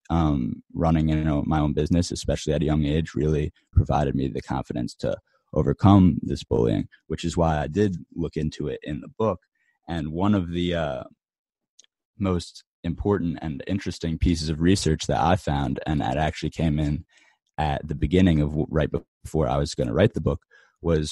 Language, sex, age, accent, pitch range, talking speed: English, male, 20-39, American, 75-90 Hz, 180 wpm